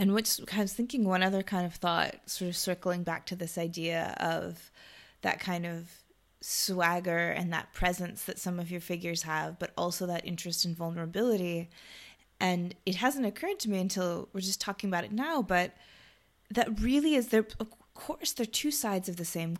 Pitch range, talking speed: 170-205 Hz, 195 wpm